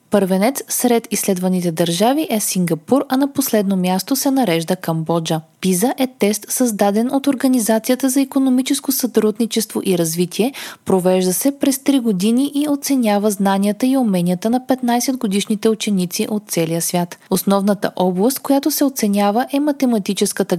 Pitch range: 185-255 Hz